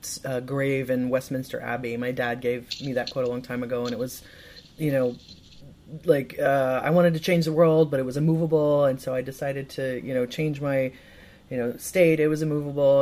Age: 30-49